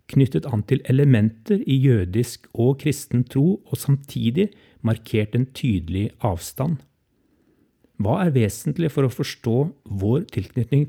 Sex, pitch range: male, 110-135 Hz